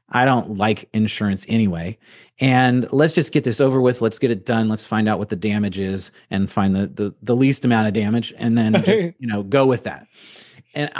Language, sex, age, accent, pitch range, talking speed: English, male, 30-49, American, 110-135 Hz, 225 wpm